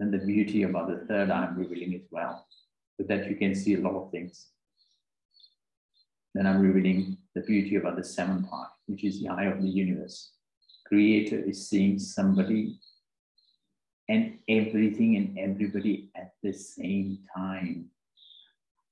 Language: English